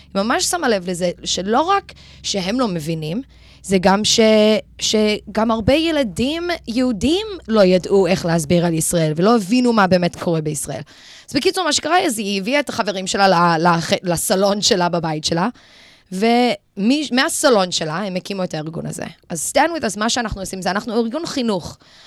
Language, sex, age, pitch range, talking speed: Hebrew, female, 20-39, 185-255 Hz, 160 wpm